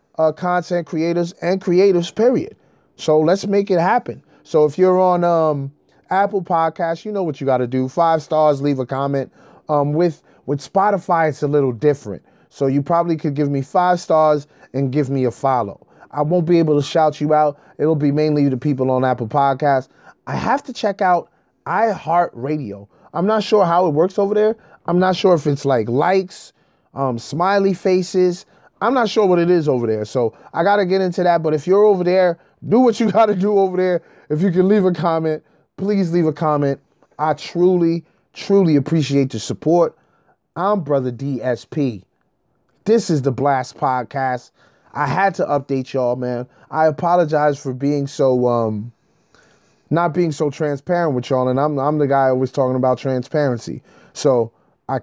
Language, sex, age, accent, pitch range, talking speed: English, male, 30-49, American, 140-180 Hz, 185 wpm